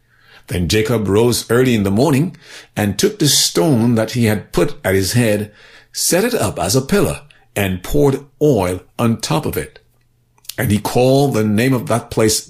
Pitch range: 105-140 Hz